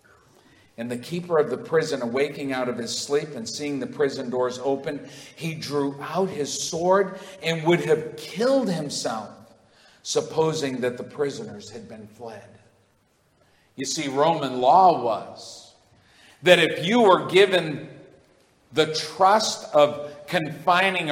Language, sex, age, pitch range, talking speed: English, male, 50-69, 145-195 Hz, 135 wpm